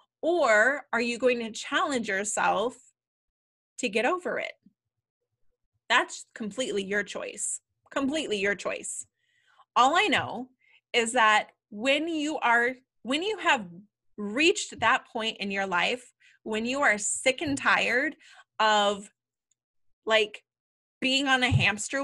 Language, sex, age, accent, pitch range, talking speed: English, female, 20-39, American, 215-295 Hz, 130 wpm